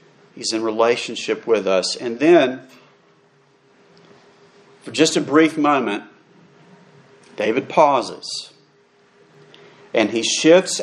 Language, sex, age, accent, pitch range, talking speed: English, male, 40-59, American, 120-155 Hz, 95 wpm